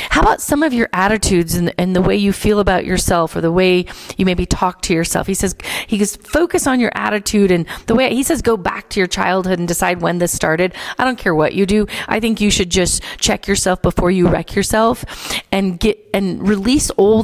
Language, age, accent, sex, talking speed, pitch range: English, 40-59, American, female, 235 wpm, 170-210 Hz